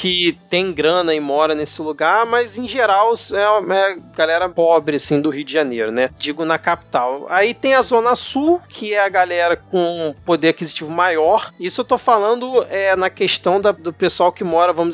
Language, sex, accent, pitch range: Portuguese, male, Brazilian, 150-195 Hz